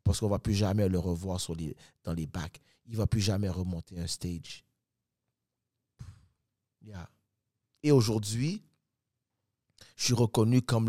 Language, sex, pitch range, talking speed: French, male, 105-125 Hz, 155 wpm